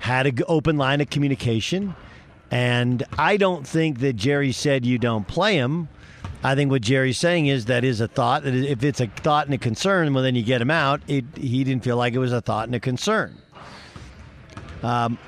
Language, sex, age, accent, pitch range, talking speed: English, male, 50-69, American, 125-145 Hz, 210 wpm